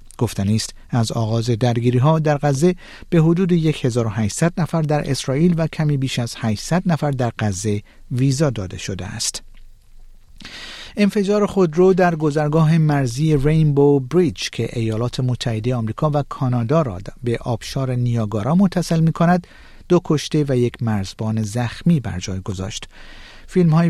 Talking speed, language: 140 wpm, Persian